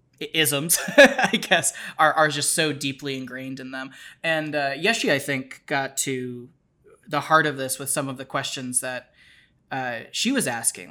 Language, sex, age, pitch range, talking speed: English, male, 20-39, 135-160 Hz, 170 wpm